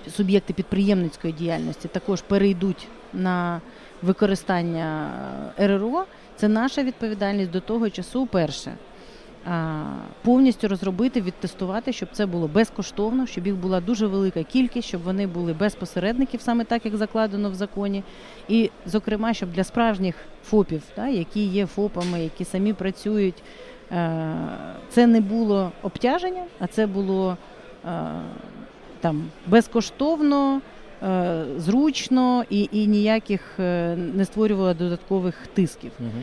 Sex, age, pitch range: female, 40-59, 180-225 Hz